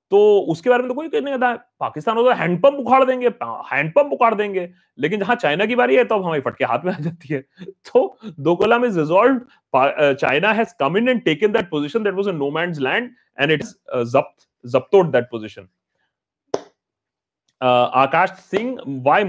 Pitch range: 135-215 Hz